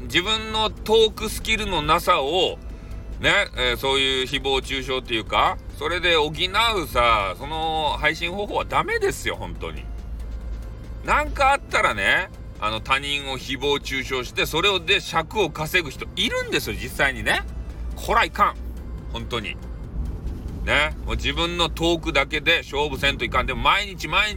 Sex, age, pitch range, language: male, 40-59, 115-165 Hz, Japanese